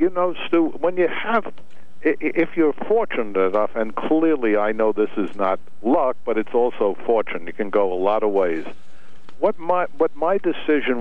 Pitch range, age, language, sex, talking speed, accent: 105-155 Hz, 60-79, English, male, 185 wpm, American